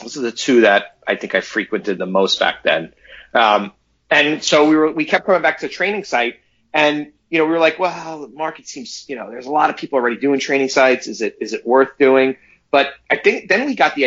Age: 30-49